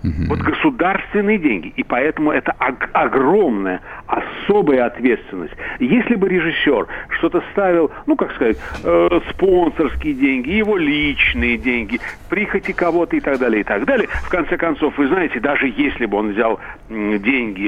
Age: 60-79